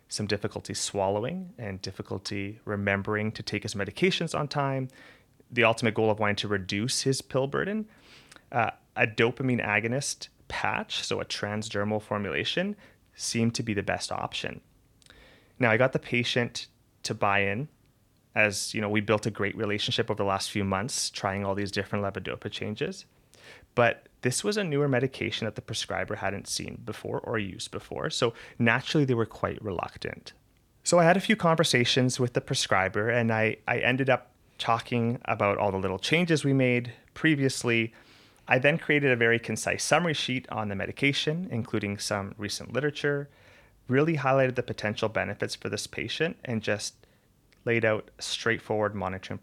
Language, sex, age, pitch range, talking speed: English, male, 30-49, 105-130 Hz, 170 wpm